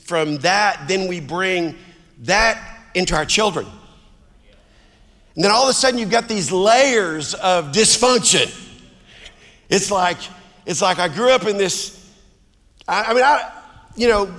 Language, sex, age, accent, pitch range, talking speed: English, male, 50-69, American, 145-210 Hz, 150 wpm